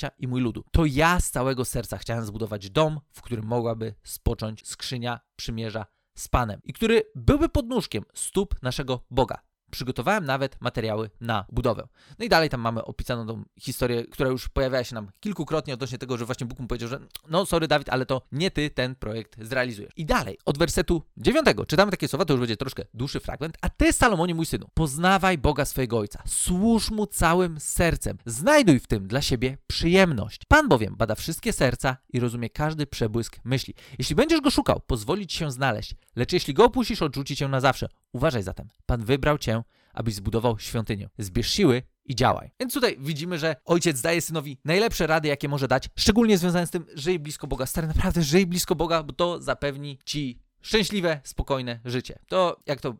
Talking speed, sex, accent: 190 wpm, male, native